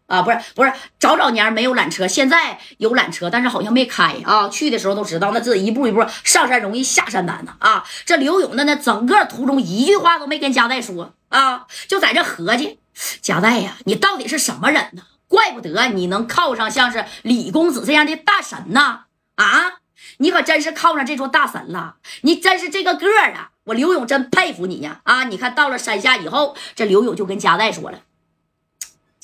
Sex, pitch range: female, 230-335 Hz